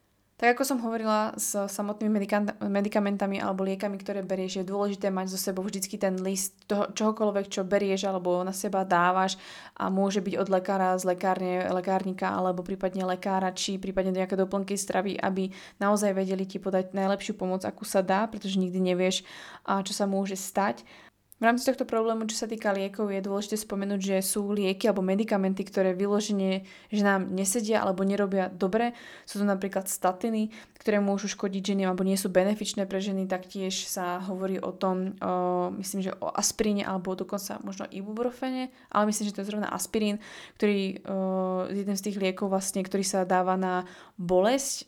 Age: 20-39